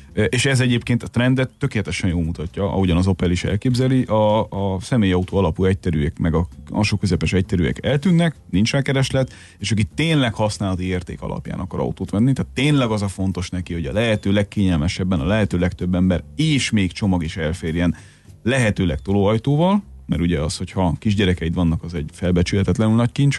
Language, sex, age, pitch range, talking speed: Hungarian, male, 30-49, 90-115 Hz, 180 wpm